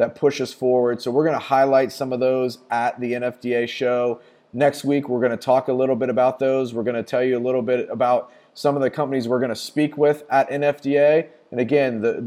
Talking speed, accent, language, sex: 245 wpm, American, English, male